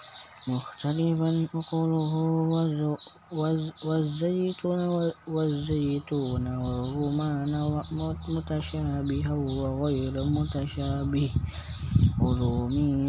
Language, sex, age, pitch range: Indonesian, female, 20-39, 140-160 Hz